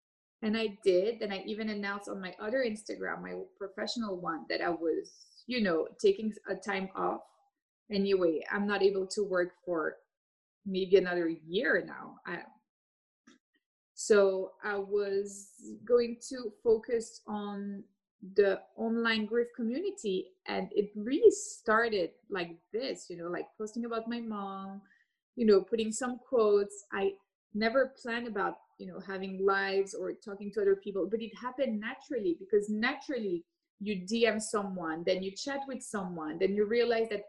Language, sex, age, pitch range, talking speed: English, female, 20-39, 195-250 Hz, 150 wpm